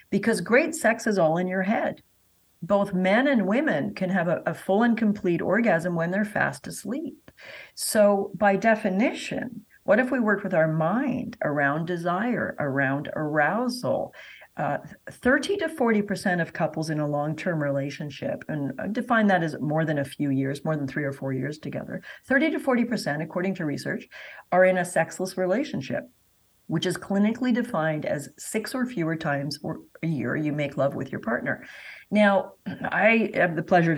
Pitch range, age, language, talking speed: 155-215 Hz, 50-69, English, 170 wpm